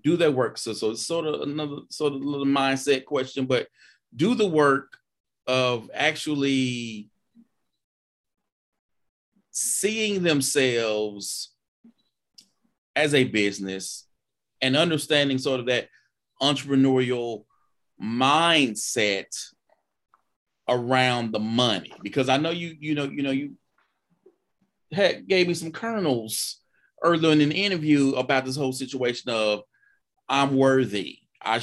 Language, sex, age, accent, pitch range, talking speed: English, male, 30-49, American, 125-165 Hz, 120 wpm